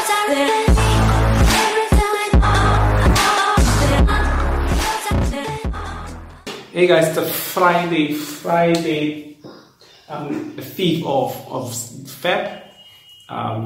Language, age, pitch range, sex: English, 30-49, 115-135 Hz, male